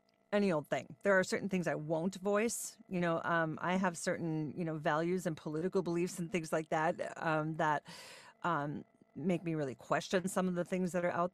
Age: 40-59